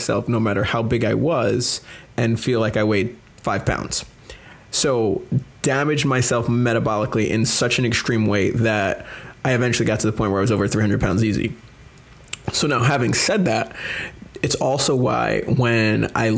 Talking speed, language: 170 wpm, English